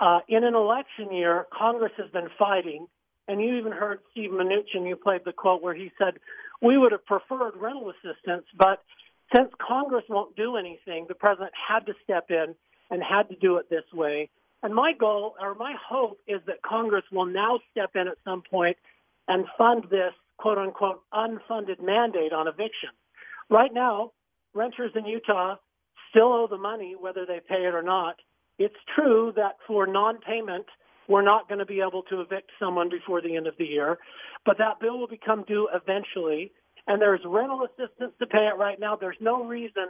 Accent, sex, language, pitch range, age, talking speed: American, male, English, 180-225 Hz, 50-69, 190 wpm